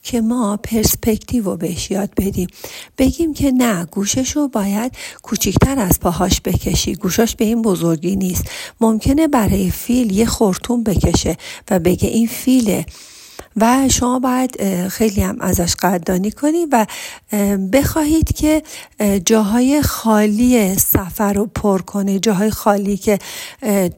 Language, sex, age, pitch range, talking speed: Persian, female, 50-69, 185-245 Hz, 125 wpm